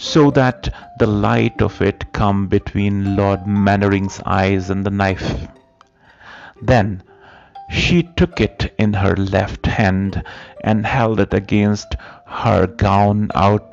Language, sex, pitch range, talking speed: Hindi, male, 95-115 Hz, 125 wpm